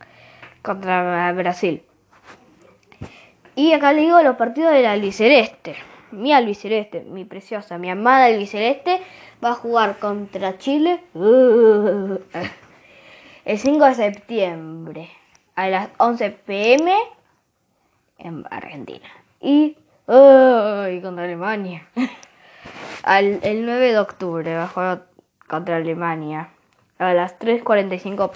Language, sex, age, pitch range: Spanish, female, 20-39, 180-245 Hz